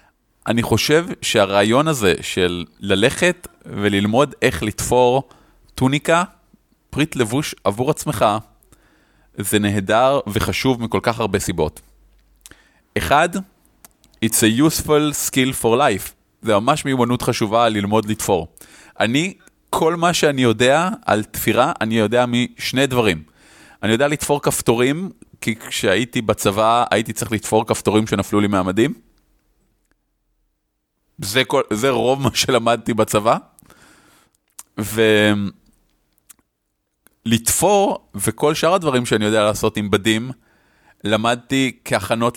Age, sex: 30-49, male